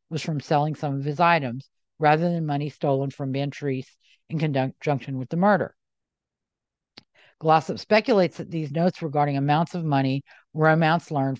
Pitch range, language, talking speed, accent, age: 140-170 Hz, English, 160 wpm, American, 50-69